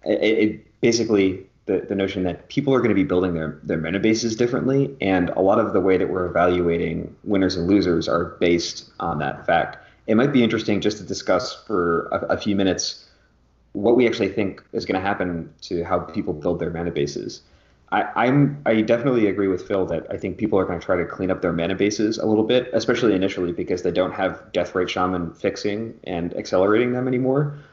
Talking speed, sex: 215 wpm, male